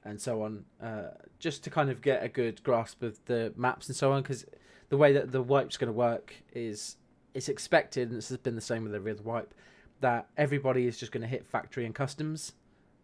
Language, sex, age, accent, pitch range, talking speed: English, male, 20-39, British, 115-135 Hz, 230 wpm